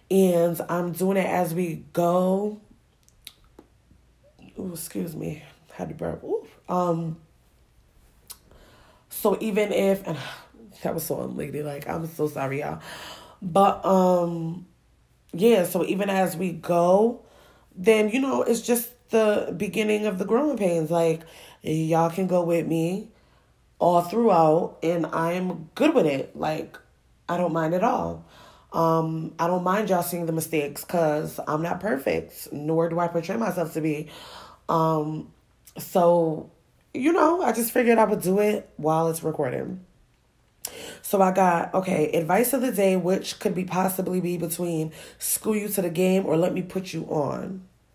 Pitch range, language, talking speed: 165-195 Hz, English, 155 wpm